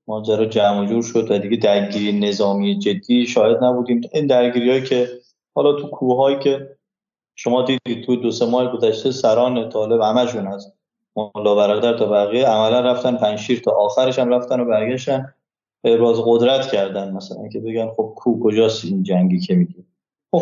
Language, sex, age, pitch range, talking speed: Persian, male, 20-39, 105-135 Hz, 180 wpm